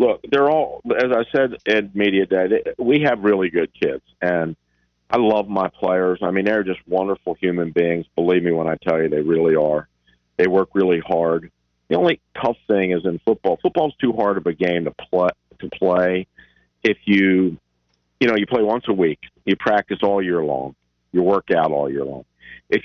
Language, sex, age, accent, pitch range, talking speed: English, male, 50-69, American, 85-105 Hz, 200 wpm